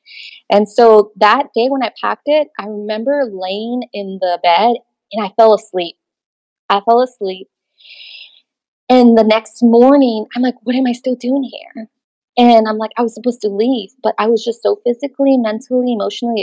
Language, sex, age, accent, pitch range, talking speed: English, female, 20-39, American, 200-240 Hz, 180 wpm